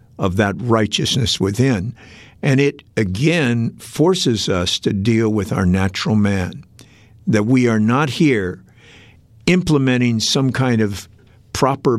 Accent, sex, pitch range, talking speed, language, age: American, male, 105-125 Hz, 125 wpm, Filipino, 50-69